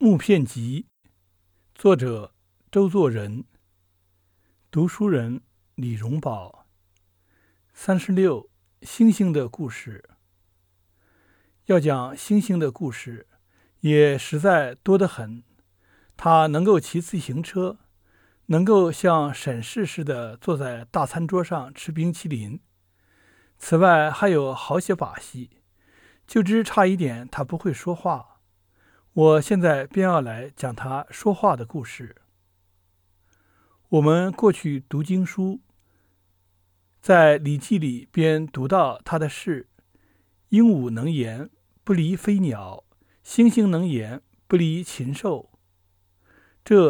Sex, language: male, Chinese